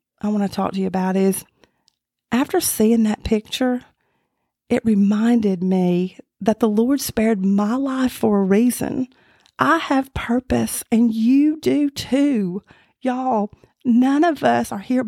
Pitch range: 215-260 Hz